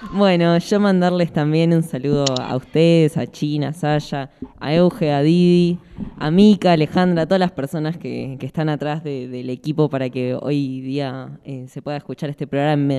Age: 10-29